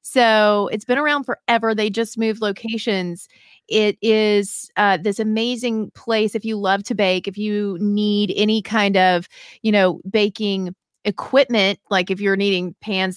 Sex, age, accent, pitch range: female, 30-49, American, 185-220 Hz